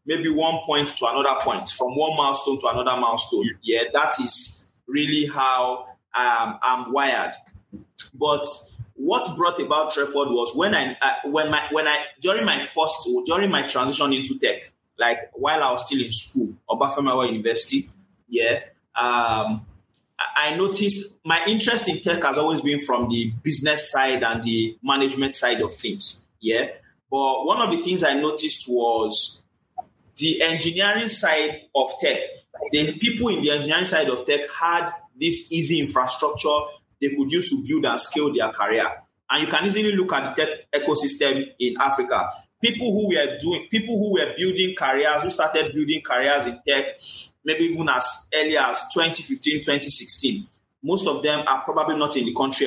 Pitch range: 130-170 Hz